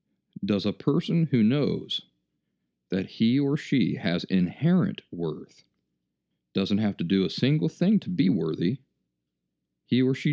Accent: American